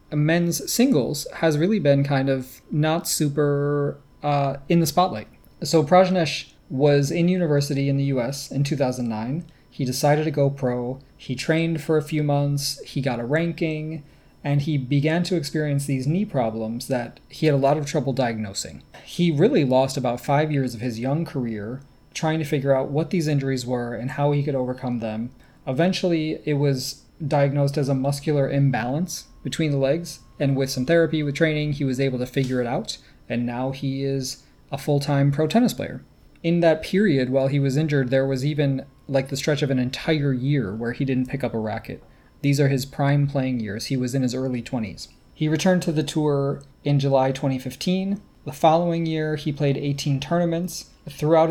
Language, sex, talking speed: English, male, 190 wpm